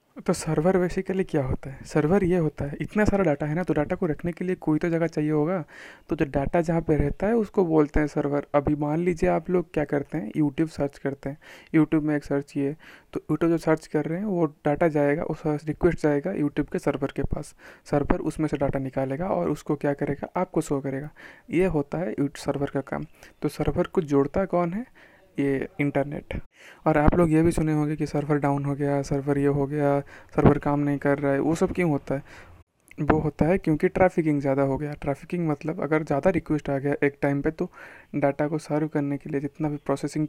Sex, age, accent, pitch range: male, 20-39, native, 145-170 Hz